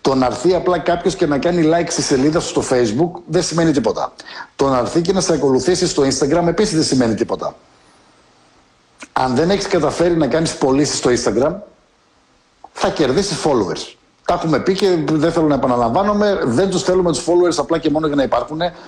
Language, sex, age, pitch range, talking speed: Greek, male, 60-79, 135-185 Hz, 195 wpm